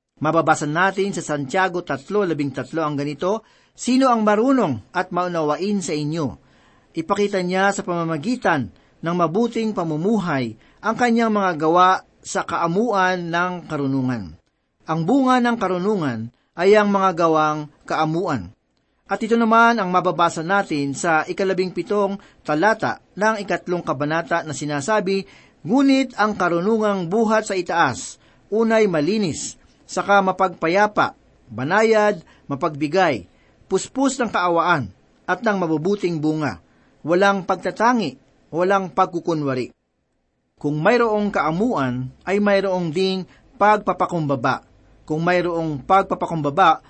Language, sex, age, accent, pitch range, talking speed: Filipino, male, 40-59, native, 155-205 Hz, 110 wpm